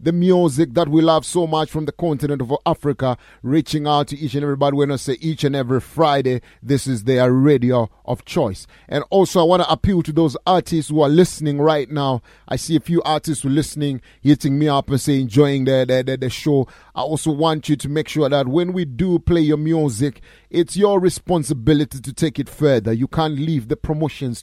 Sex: male